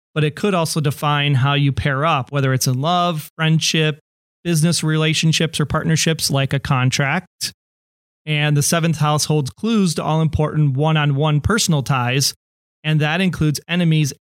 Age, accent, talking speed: 30-49, American, 155 wpm